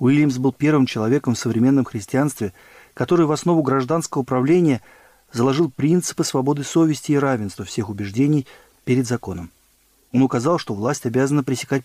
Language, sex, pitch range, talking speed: Russian, male, 125-160 Hz, 140 wpm